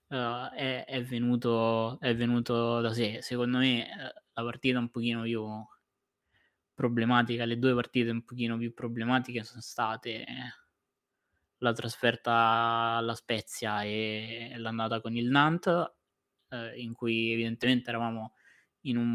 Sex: male